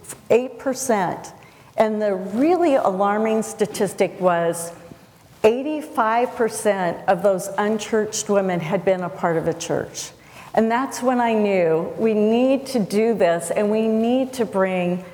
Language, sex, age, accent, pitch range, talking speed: English, female, 50-69, American, 185-230 Hz, 135 wpm